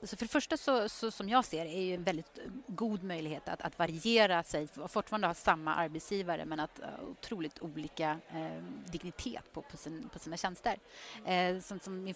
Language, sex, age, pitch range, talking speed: Swedish, female, 30-49, 155-200 Hz, 200 wpm